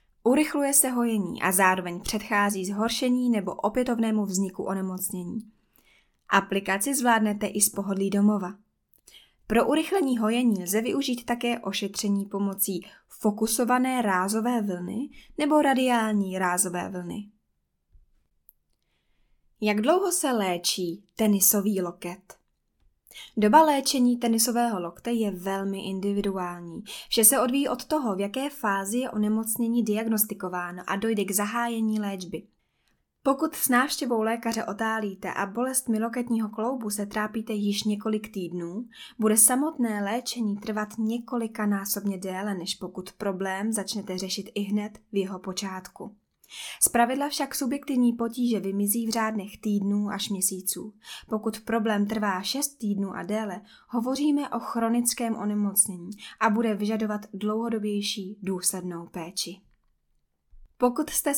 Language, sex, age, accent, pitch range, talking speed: Czech, female, 20-39, native, 195-235 Hz, 115 wpm